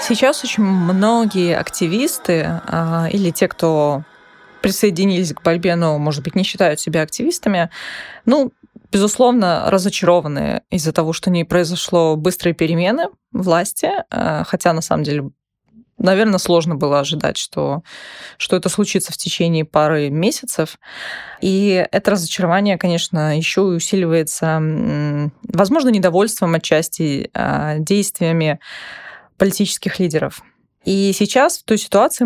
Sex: female